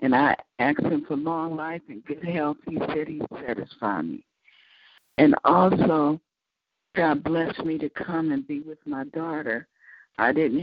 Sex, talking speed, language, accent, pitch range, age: female, 170 wpm, English, American, 145-165 Hz, 60-79